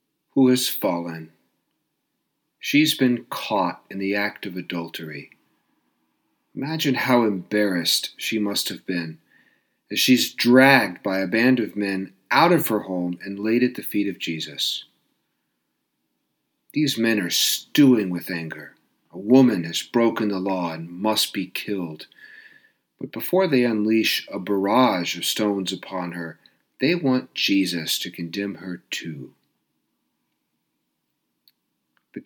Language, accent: English, American